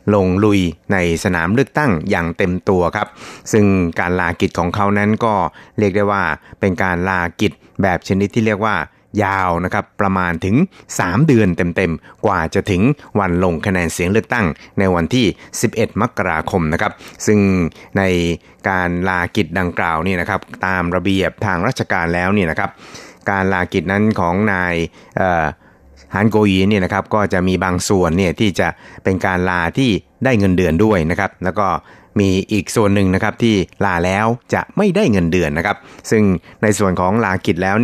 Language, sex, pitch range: Thai, male, 90-105 Hz